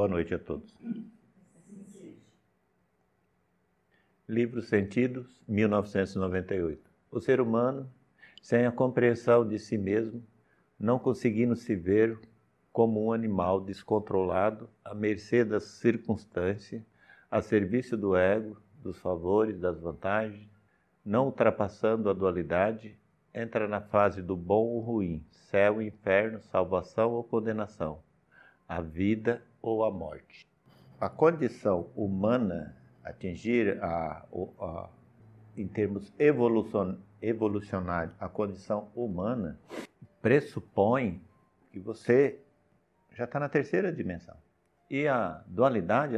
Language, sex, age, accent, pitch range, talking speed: Portuguese, male, 50-69, Brazilian, 95-120 Hz, 110 wpm